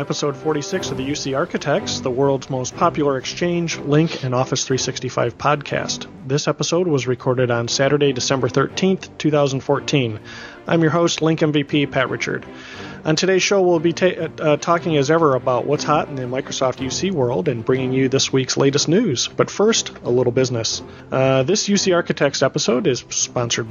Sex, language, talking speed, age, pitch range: male, English, 175 wpm, 40-59, 130-165 Hz